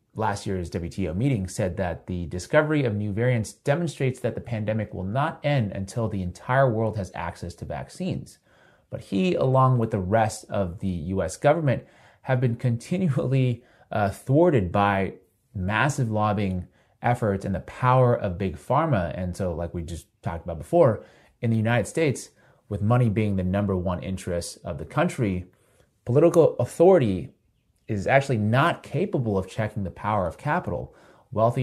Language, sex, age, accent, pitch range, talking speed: English, male, 30-49, American, 95-125 Hz, 165 wpm